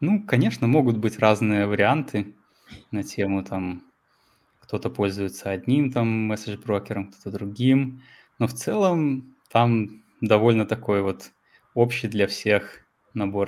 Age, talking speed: 20-39, 120 wpm